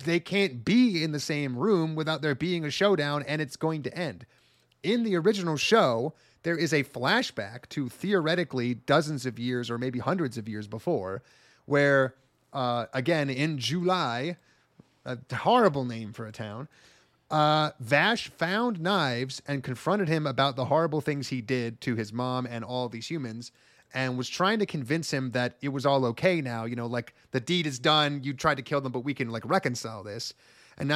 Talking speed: 190 wpm